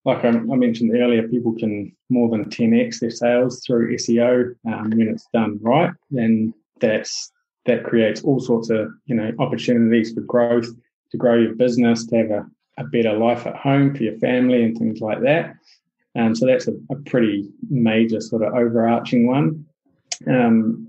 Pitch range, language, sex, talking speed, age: 110-120 Hz, English, male, 180 wpm, 20-39